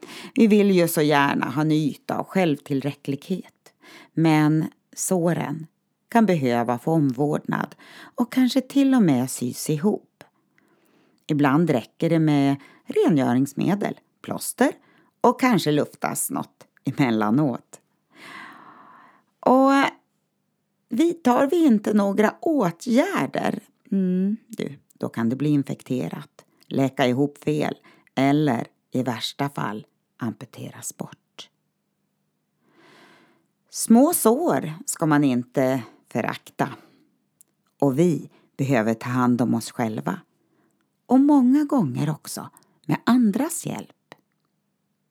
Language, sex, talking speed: Swedish, female, 100 wpm